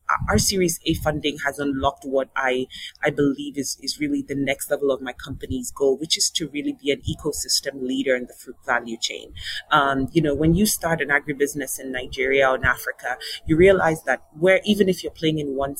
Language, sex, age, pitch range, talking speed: English, female, 30-49, 140-165 Hz, 215 wpm